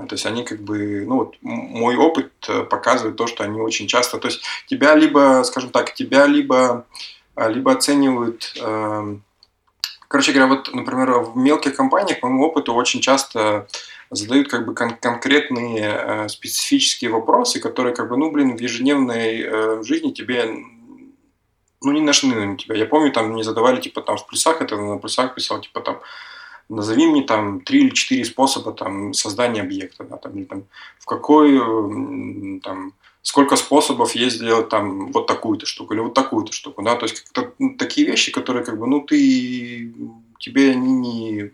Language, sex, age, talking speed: Russian, male, 20-39, 170 wpm